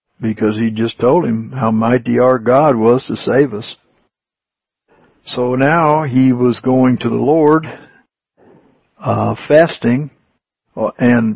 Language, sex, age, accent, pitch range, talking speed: English, male, 60-79, American, 120-150 Hz, 125 wpm